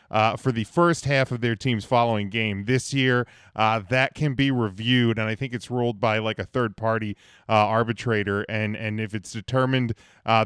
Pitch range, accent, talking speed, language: 110-130 Hz, American, 200 wpm, English